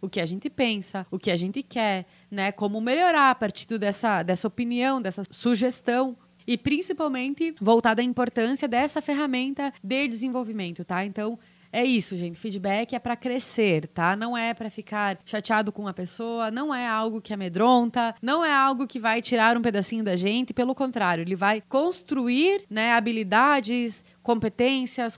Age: 20-39